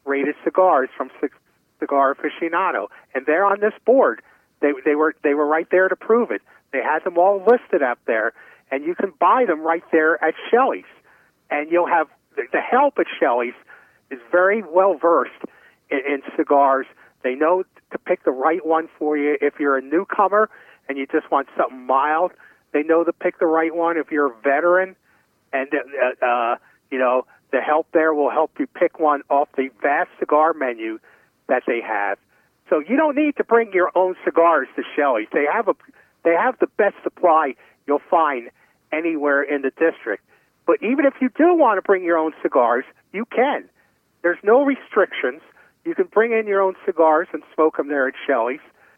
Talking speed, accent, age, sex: 190 wpm, American, 50-69, male